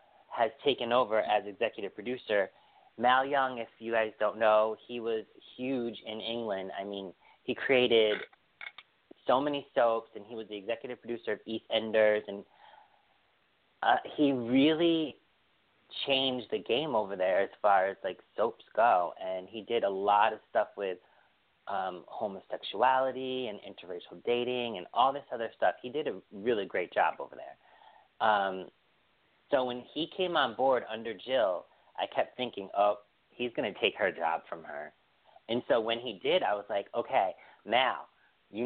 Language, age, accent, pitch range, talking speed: English, 30-49, American, 110-130 Hz, 165 wpm